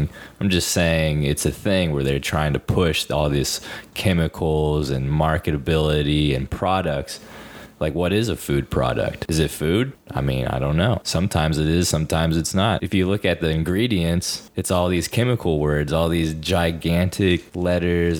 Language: English